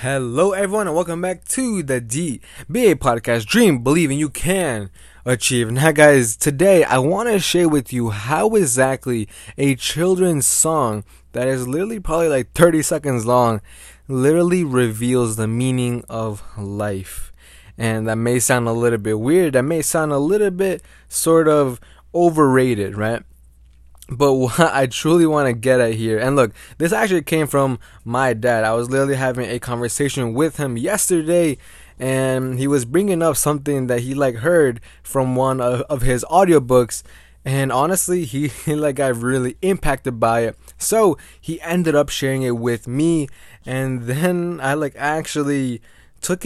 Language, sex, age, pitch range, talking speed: English, male, 20-39, 120-160 Hz, 165 wpm